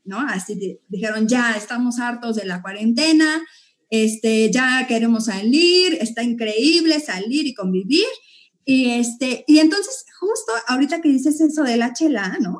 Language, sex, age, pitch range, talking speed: Spanish, female, 30-49, 210-295 Hz, 150 wpm